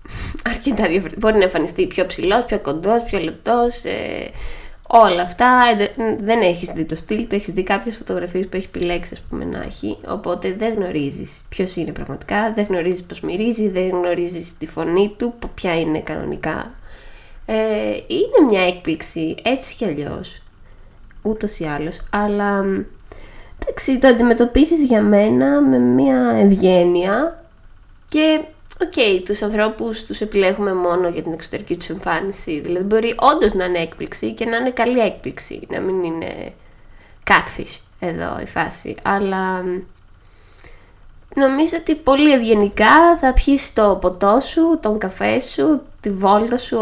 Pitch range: 175-245 Hz